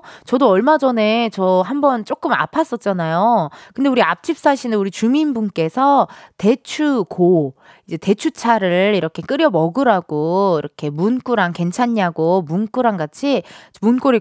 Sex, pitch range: female, 195-295 Hz